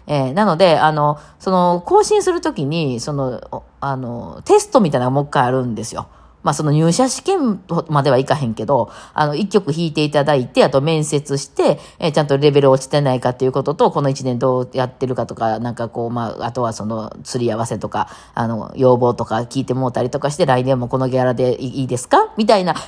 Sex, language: female, Japanese